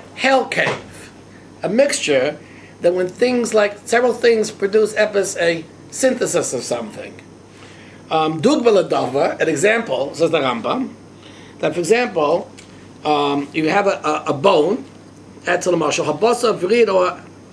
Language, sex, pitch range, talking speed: English, male, 155-220 Hz, 85 wpm